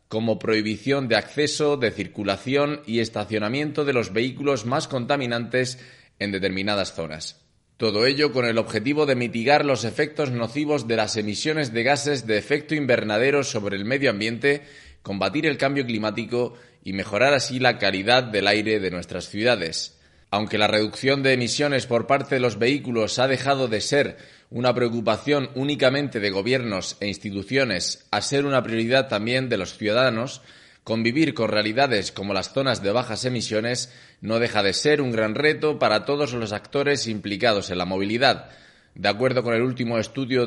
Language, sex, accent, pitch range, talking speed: Spanish, male, Spanish, 105-140 Hz, 165 wpm